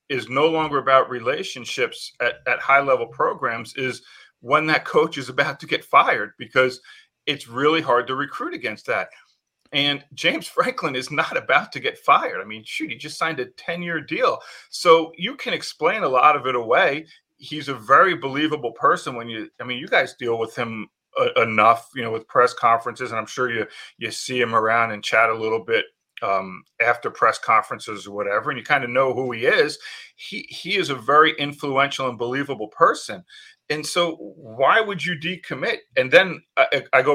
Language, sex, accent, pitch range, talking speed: English, male, American, 120-165 Hz, 200 wpm